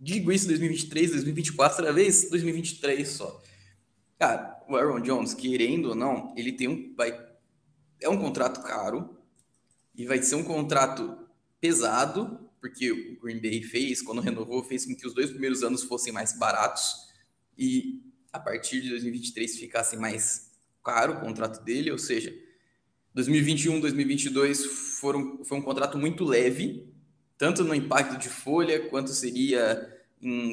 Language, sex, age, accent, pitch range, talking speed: Portuguese, male, 10-29, Brazilian, 120-160 Hz, 145 wpm